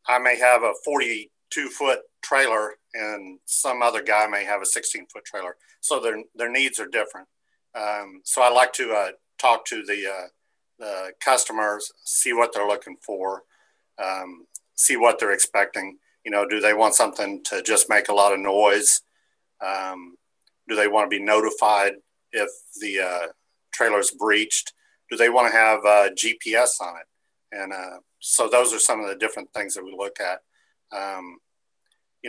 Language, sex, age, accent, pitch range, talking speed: English, male, 50-69, American, 100-115 Hz, 175 wpm